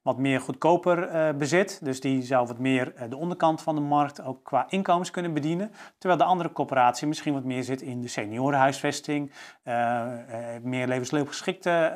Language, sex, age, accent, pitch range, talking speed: Dutch, male, 40-59, Dutch, 130-155 Hz, 160 wpm